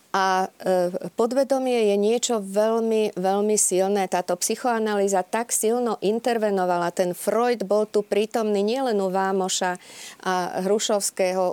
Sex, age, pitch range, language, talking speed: female, 40-59, 180-210 Hz, Slovak, 115 wpm